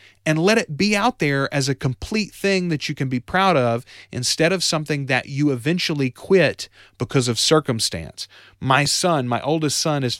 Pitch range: 125-160 Hz